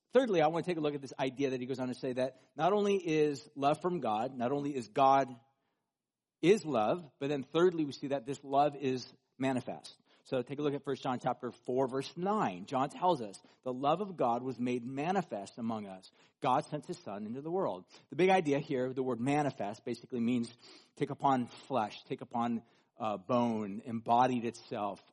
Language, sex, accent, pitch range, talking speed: English, male, American, 120-155 Hz, 210 wpm